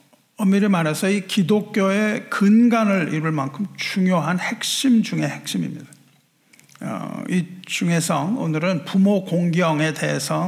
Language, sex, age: Korean, male, 50-69